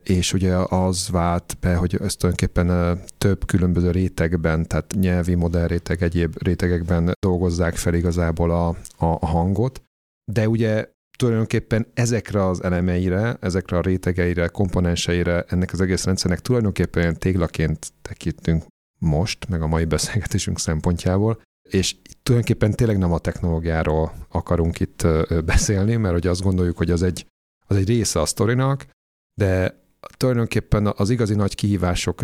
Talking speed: 140 wpm